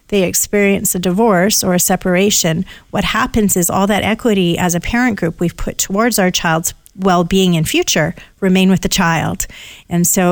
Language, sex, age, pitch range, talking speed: English, female, 40-59, 175-215 Hz, 180 wpm